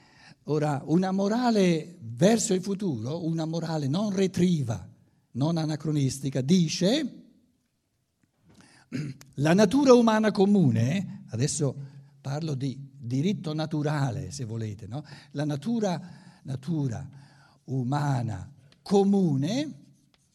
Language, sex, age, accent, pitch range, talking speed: Italian, male, 60-79, native, 130-190 Hz, 90 wpm